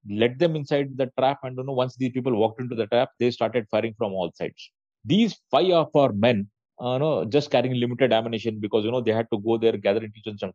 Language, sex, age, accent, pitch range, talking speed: Hindi, male, 30-49, native, 105-125 Hz, 250 wpm